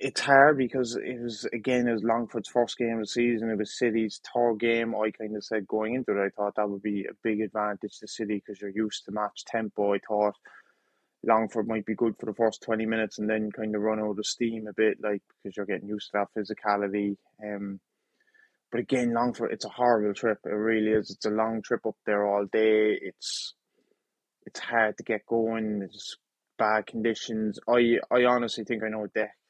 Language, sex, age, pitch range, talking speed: English, male, 20-39, 105-120 Hz, 220 wpm